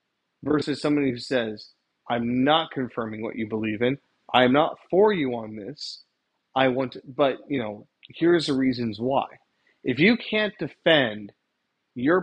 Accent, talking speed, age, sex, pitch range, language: American, 155 wpm, 30-49, male, 115-150 Hz, English